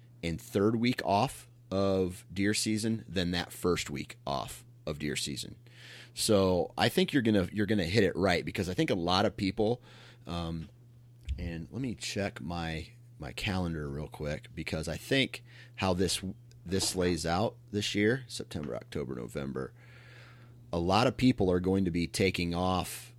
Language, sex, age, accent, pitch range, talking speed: English, male, 30-49, American, 85-120 Hz, 170 wpm